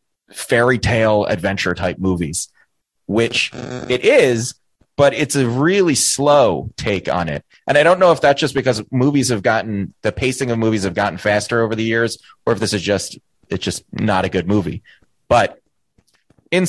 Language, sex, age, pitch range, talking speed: English, male, 30-49, 100-145 Hz, 180 wpm